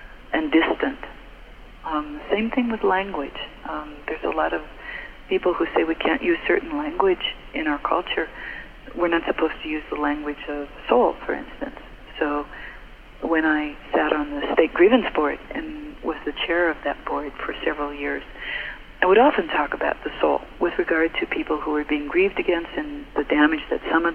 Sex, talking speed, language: female, 185 wpm, English